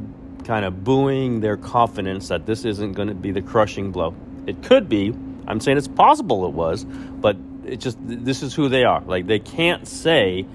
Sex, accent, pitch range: male, American, 95-120 Hz